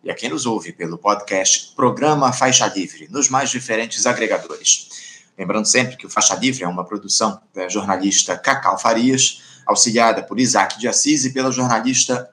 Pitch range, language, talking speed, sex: 110-135 Hz, Portuguese, 170 wpm, male